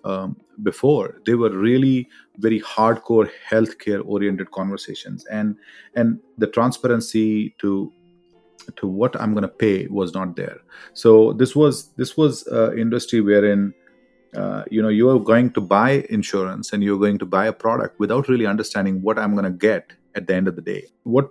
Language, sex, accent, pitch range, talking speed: English, male, Indian, 100-120 Hz, 175 wpm